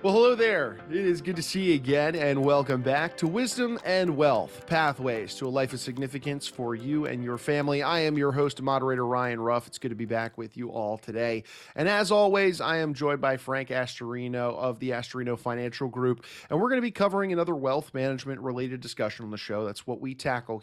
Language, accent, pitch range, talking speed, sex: English, American, 120-170 Hz, 225 wpm, male